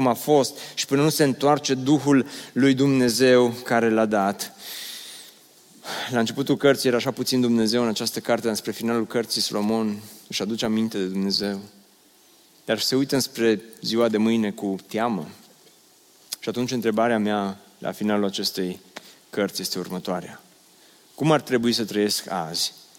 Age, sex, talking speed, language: 30-49, male, 150 wpm, Romanian